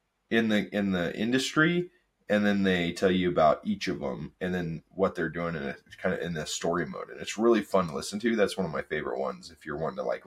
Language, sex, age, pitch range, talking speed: English, male, 20-39, 90-110 Hz, 265 wpm